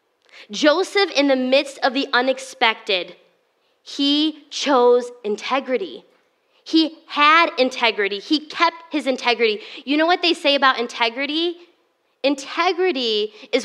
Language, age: English, 20-39